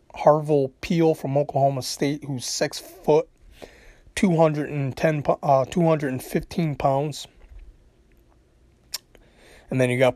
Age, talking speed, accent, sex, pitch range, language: 30-49, 105 wpm, American, male, 125-150 Hz, English